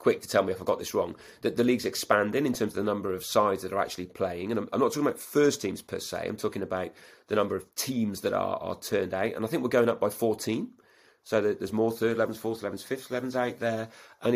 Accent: British